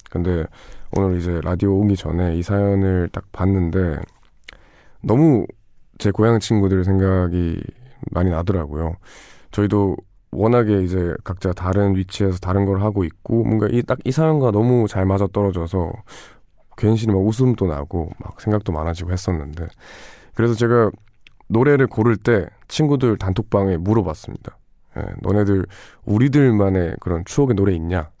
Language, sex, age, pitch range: Korean, male, 20-39, 90-115 Hz